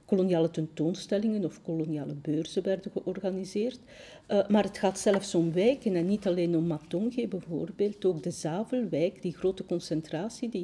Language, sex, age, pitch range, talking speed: Dutch, female, 50-69, 160-200 Hz, 150 wpm